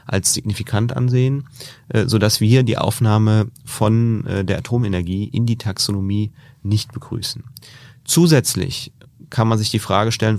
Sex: male